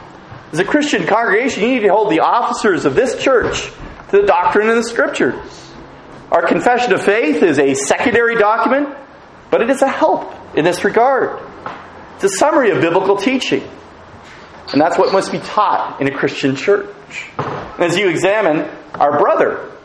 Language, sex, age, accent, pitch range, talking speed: English, male, 40-59, American, 205-325 Hz, 170 wpm